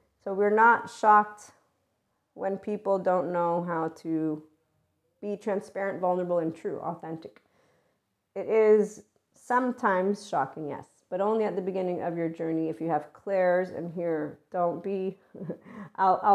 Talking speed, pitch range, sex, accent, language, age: 140 wpm, 165-195 Hz, female, American, English, 40-59